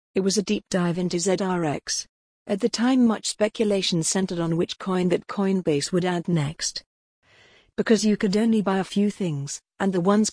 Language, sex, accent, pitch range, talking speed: English, female, British, 170-205 Hz, 185 wpm